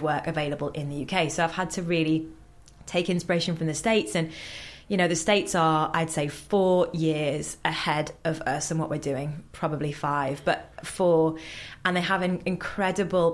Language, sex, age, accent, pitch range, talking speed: English, female, 20-39, British, 155-175 Hz, 180 wpm